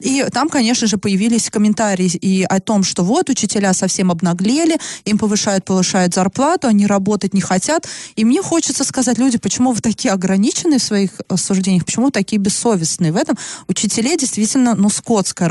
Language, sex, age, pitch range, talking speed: Russian, female, 30-49, 195-245 Hz, 165 wpm